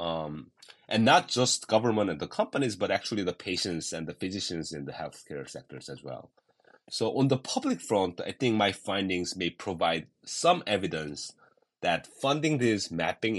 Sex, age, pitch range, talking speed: male, 30-49, 85-120 Hz, 170 wpm